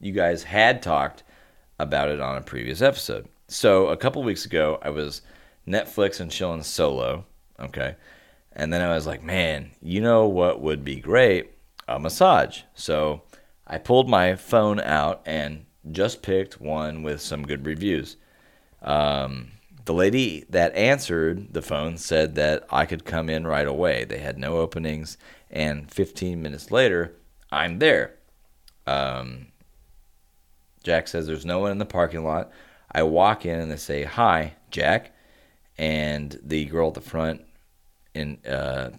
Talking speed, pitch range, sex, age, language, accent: 155 wpm, 75-90 Hz, male, 30-49, English, American